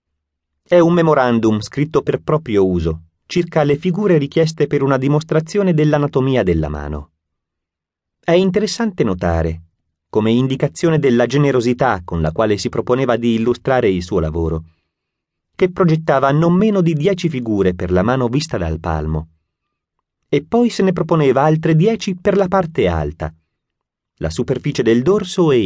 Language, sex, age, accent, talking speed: Italian, male, 30-49, native, 145 wpm